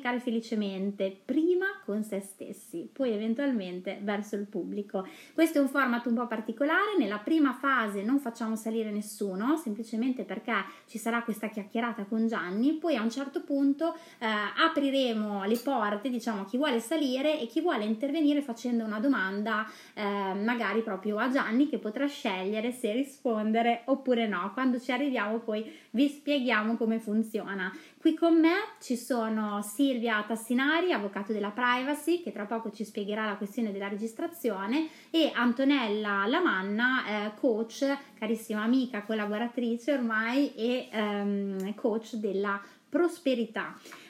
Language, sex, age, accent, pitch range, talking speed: Italian, female, 20-39, native, 210-275 Hz, 140 wpm